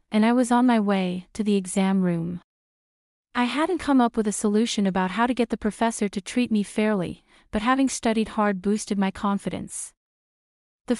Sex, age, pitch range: female, 30-49, 200-245 Hz